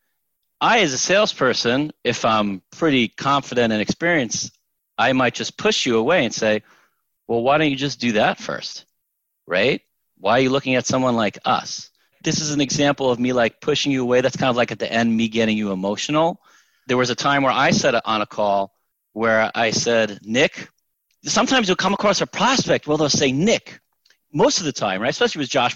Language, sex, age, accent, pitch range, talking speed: English, male, 30-49, American, 120-160 Hz, 205 wpm